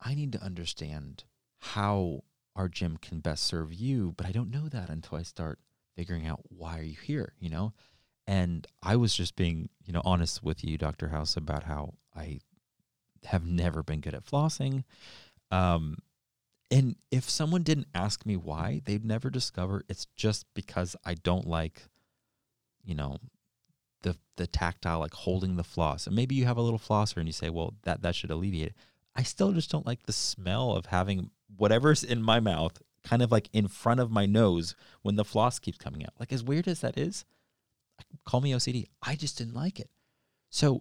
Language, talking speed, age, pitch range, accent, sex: English, 195 wpm, 30-49, 85-125 Hz, American, male